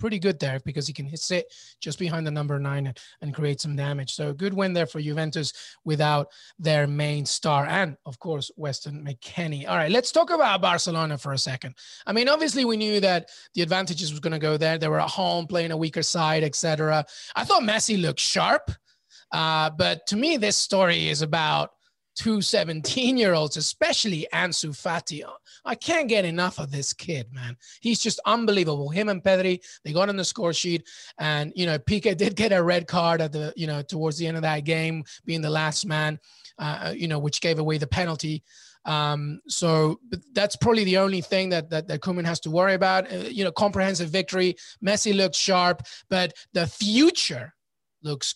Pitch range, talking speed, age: 150-190 Hz, 200 wpm, 20-39